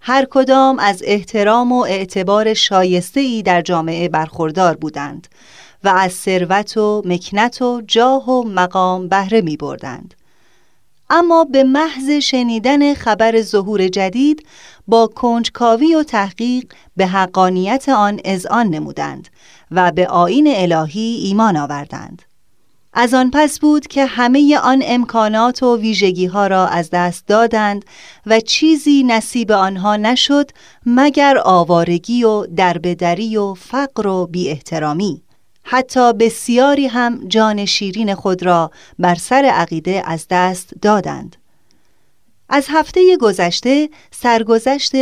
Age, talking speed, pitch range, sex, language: 30-49, 120 wpm, 185-255 Hz, female, Persian